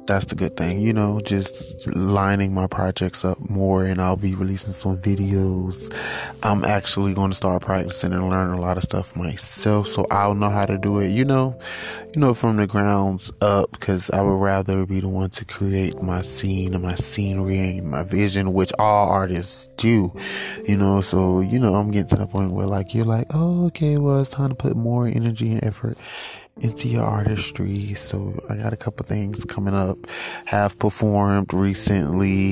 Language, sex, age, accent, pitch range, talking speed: English, male, 20-39, American, 95-105 Hz, 195 wpm